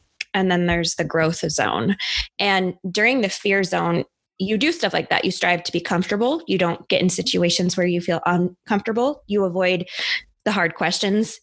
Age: 20-39